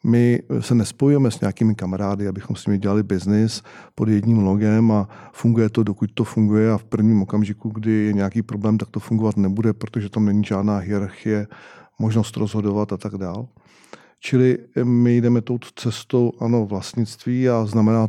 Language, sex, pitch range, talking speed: Czech, male, 105-125 Hz, 170 wpm